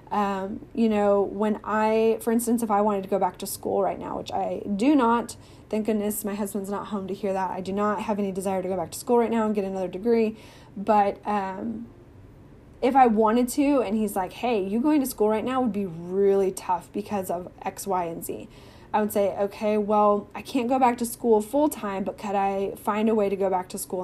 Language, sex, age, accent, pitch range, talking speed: English, female, 10-29, American, 200-235 Hz, 240 wpm